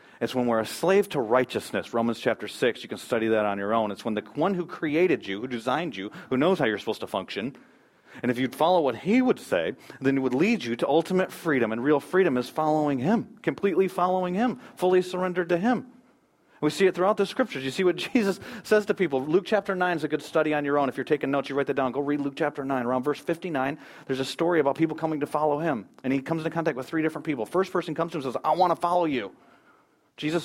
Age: 40-59